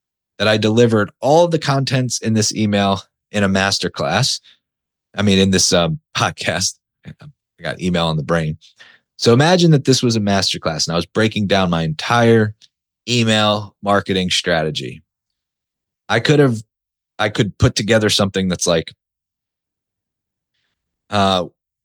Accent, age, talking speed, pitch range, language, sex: American, 30-49, 150 wpm, 95-125 Hz, English, male